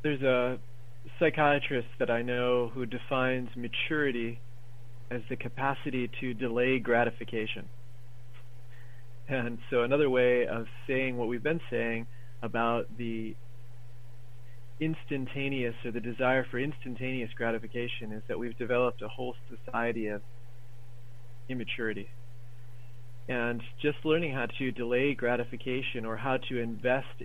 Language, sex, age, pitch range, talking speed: English, male, 40-59, 120-135 Hz, 120 wpm